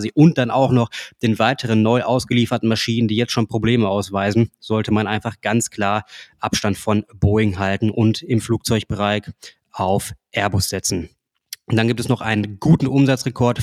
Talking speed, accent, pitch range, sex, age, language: 165 wpm, German, 110-125 Hz, male, 20-39, German